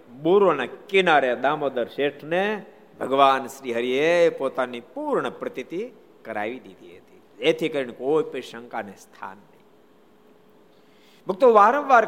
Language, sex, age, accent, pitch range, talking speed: Gujarati, male, 60-79, native, 130-215 Hz, 100 wpm